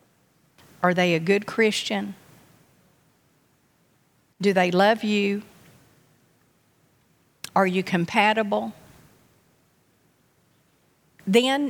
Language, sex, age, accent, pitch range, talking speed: English, female, 50-69, American, 180-220 Hz, 65 wpm